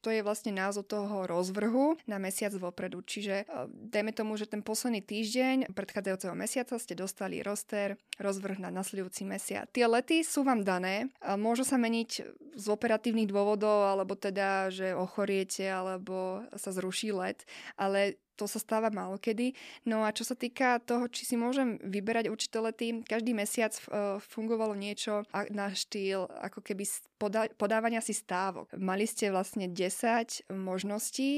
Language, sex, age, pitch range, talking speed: Slovak, female, 20-39, 190-225 Hz, 150 wpm